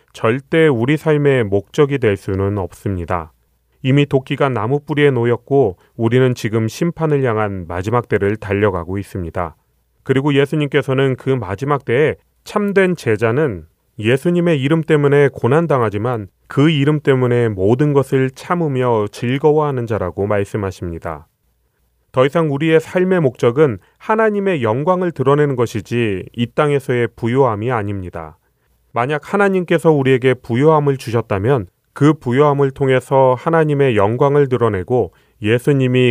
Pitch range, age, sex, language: 105-145 Hz, 30-49, male, Korean